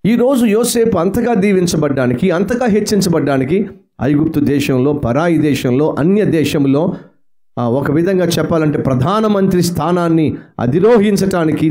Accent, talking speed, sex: native, 90 wpm, male